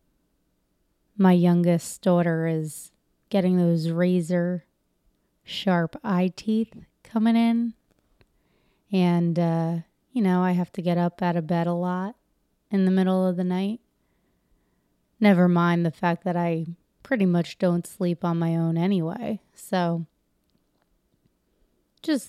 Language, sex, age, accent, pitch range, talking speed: English, female, 20-39, American, 170-200 Hz, 125 wpm